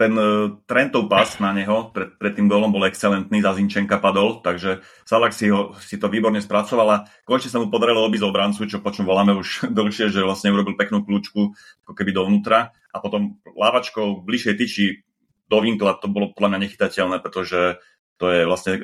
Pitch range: 95-110 Hz